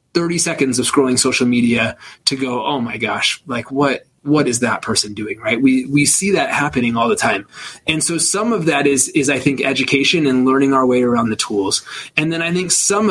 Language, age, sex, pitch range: English, 20-39, male, 125-155 Hz